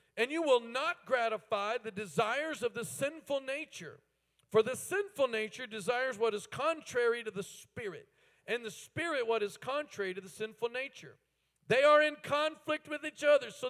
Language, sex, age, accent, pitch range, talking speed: English, male, 50-69, American, 200-275 Hz, 175 wpm